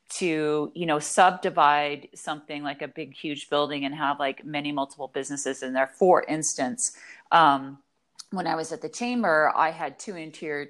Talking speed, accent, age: 175 wpm, American, 40-59